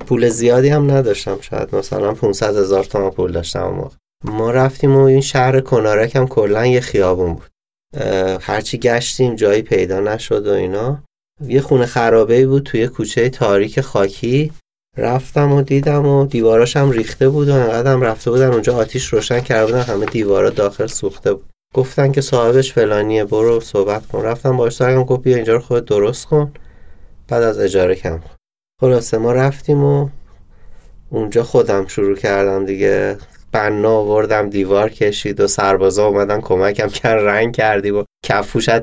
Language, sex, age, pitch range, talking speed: Persian, male, 30-49, 105-135 Hz, 155 wpm